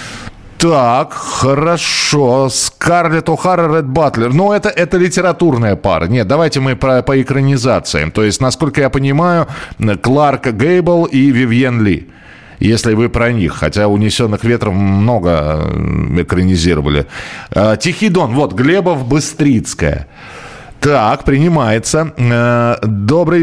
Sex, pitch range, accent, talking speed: male, 100-135 Hz, native, 115 wpm